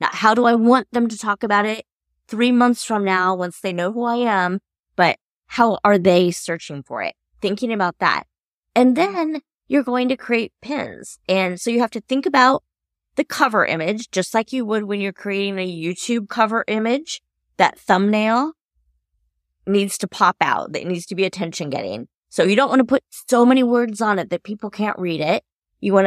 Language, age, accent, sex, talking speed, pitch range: English, 20-39, American, female, 205 wpm, 175-230 Hz